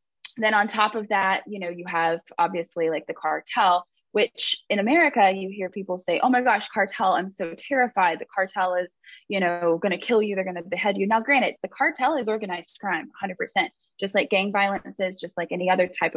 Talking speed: 220 wpm